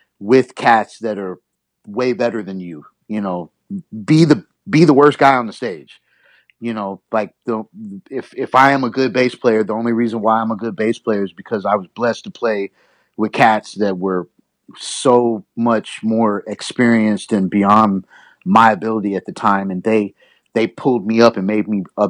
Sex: male